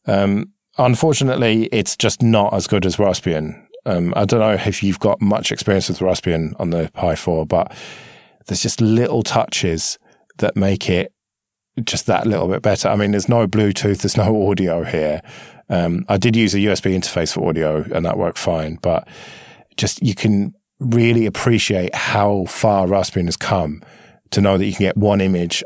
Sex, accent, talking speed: male, British, 180 wpm